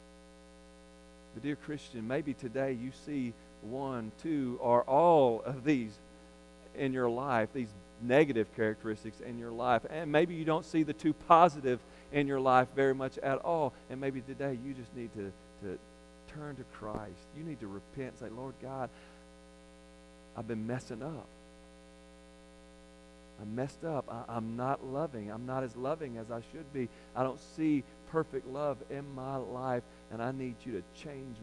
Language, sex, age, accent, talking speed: English, male, 40-59, American, 170 wpm